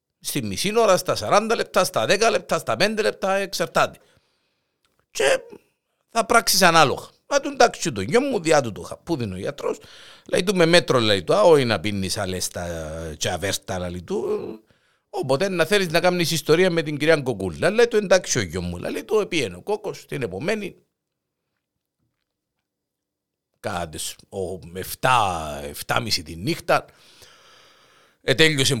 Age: 50-69